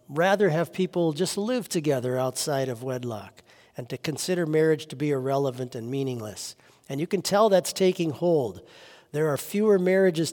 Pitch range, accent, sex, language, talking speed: 130-175 Hz, American, male, English, 170 wpm